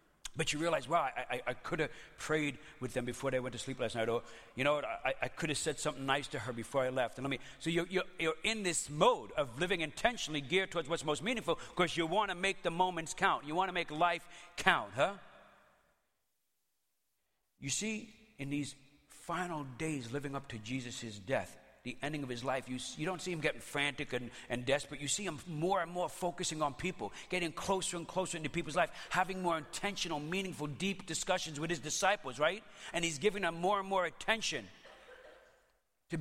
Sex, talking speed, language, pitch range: male, 215 wpm, English, 145-185 Hz